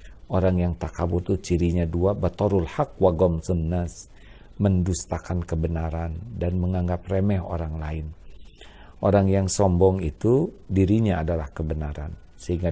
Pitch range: 85-100 Hz